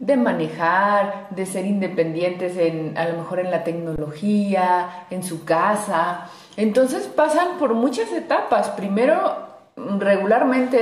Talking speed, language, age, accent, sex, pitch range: 120 wpm, Spanish, 30-49, Mexican, female, 180-245 Hz